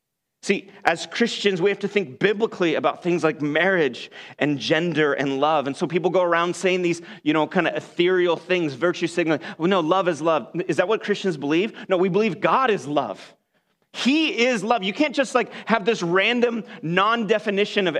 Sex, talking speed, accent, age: male, 195 wpm, American, 30-49